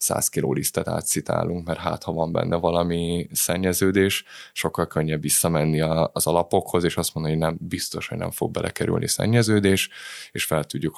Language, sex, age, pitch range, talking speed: Hungarian, male, 10-29, 80-90 Hz, 165 wpm